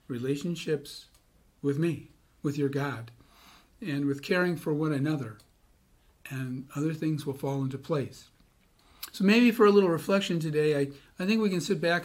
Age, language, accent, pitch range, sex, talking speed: 50-69, English, American, 140-175 Hz, male, 165 wpm